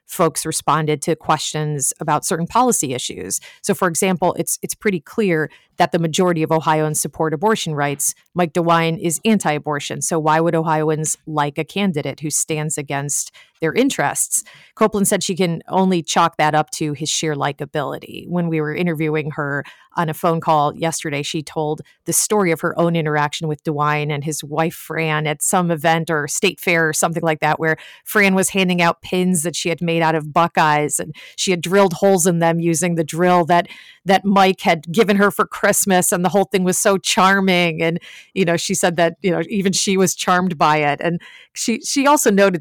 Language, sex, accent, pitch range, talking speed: English, female, American, 155-180 Hz, 200 wpm